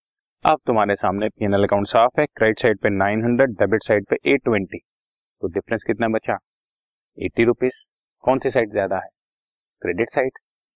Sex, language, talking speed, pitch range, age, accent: male, Hindi, 155 wpm, 100-140 Hz, 30-49, native